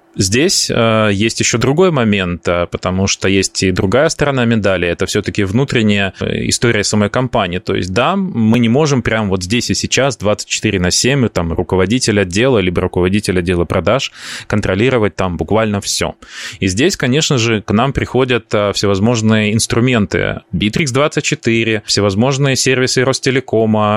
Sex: male